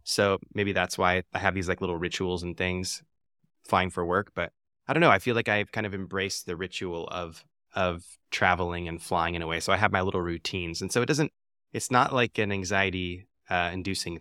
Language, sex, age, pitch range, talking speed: English, male, 20-39, 90-110 Hz, 225 wpm